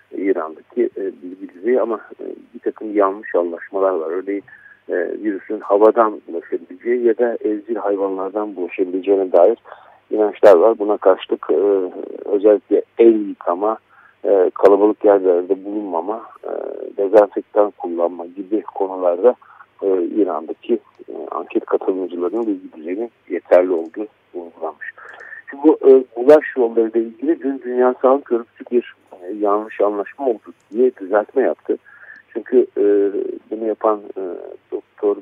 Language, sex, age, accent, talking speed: Turkish, male, 50-69, native, 105 wpm